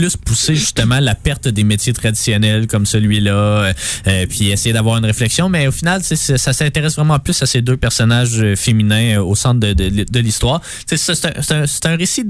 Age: 20-39